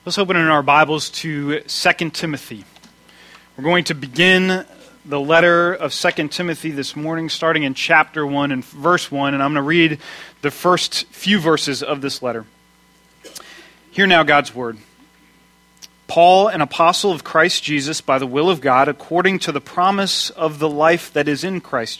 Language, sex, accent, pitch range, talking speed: English, male, American, 145-170 Hz, 175 wpm